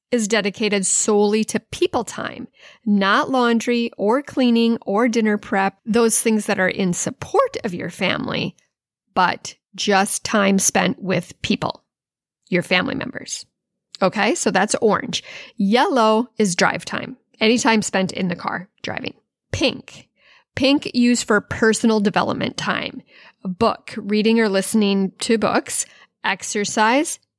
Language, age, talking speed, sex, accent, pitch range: English, 10-29, 130 wpm, female, American, 195-240 Hz